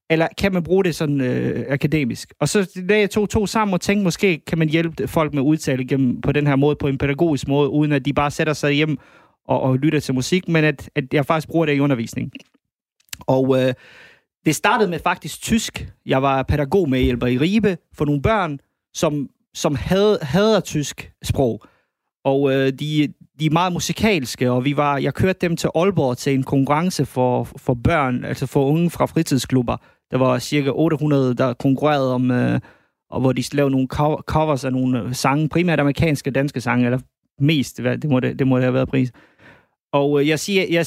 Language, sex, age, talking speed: Danish, male, 30-49, 200 wpm